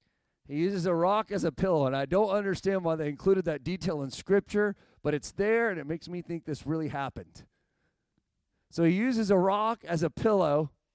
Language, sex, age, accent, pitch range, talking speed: English, male, 40-59, American, 135-190 Hz, 205 wpm